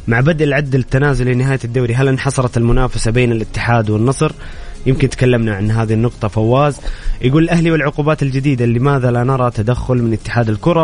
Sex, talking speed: male, 160 wpm